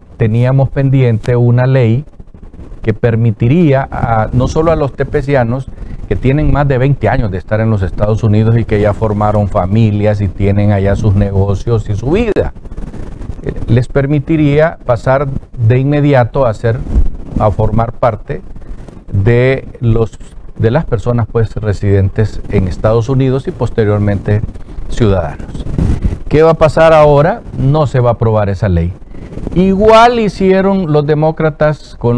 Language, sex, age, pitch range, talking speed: Spanish, male, 50-69, 105-140 Hz, 145 wpm